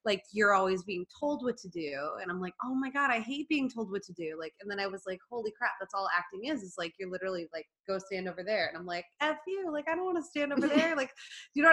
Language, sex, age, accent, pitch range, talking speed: English, female, 20-39, American, 180-245 Hz, 295 wpm